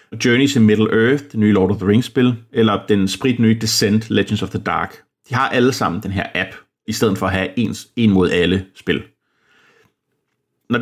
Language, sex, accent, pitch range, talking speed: Danish, male, native, 105-130 Hz, 185 wpm